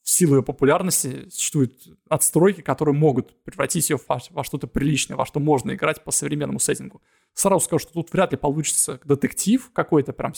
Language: Russian